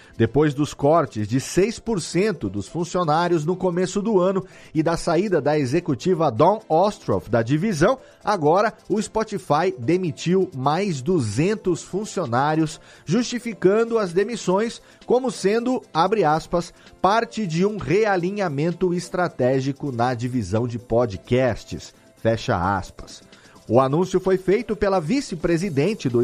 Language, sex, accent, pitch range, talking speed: Portuguese, male, Brazilian, 135-200 Hz, 120 wpm